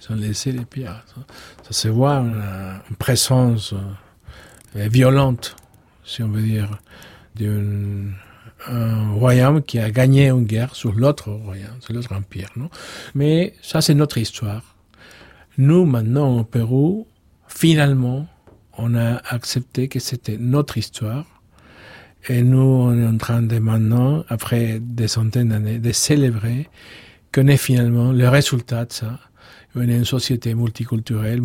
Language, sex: French, male